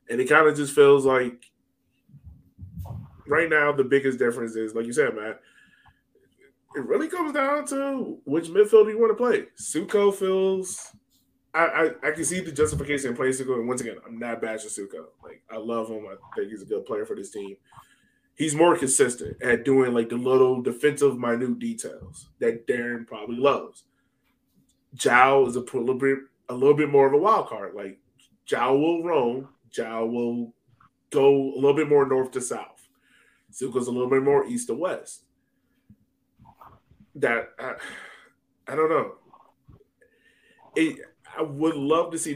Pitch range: 120-190 Hz